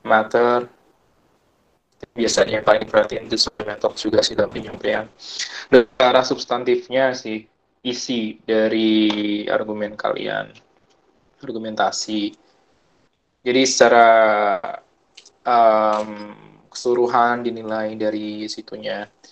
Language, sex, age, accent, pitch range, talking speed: Indonesian, male, 20-39, native, 105-120 Hz, 90 wpm